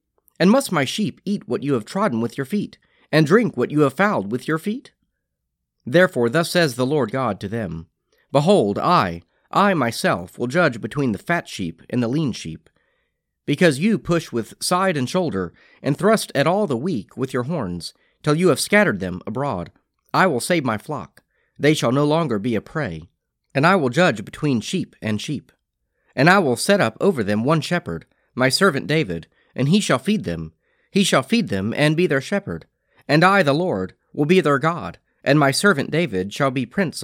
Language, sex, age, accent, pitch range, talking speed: English, male, 40-59, American, 115-180 Hz, 205 wpm